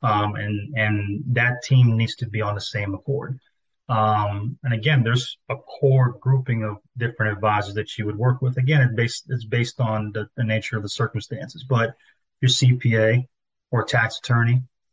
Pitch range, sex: 110-130 Hz, male